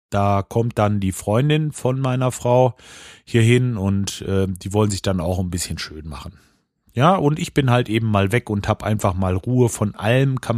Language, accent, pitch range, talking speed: German, German, 105-135 Hz, 210 wpm